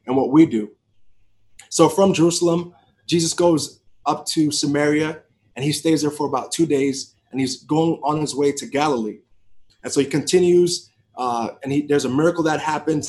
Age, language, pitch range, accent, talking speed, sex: 30-49, English, 125-155 Hz, American, 185 wpm, male